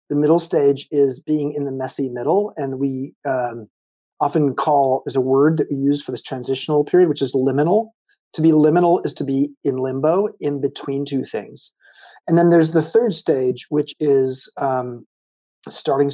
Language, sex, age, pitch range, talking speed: English, male, 40-59, 140-185 Hz, 180 wpm